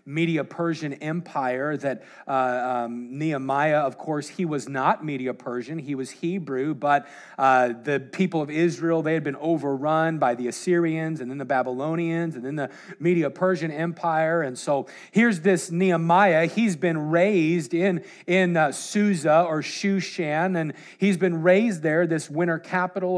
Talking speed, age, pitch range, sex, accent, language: 160 wpm, 40-59, 155-195 Hz, male, American, English